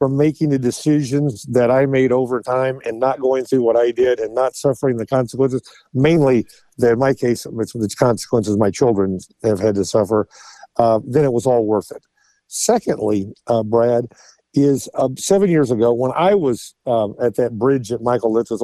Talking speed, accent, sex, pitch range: 195 wpm, American, male, 115-145 Hz